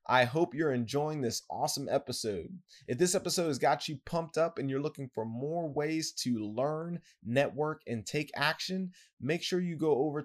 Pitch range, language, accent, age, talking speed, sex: 120-155 Hz, English, American, 20-39, 185 wpm, male